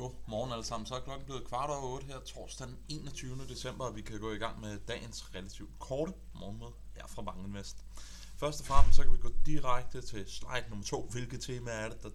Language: Danish